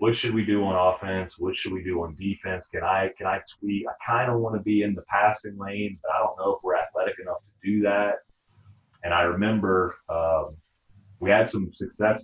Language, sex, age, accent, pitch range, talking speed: English, male, 30-49, American, 90-105 Hz, 225 wpm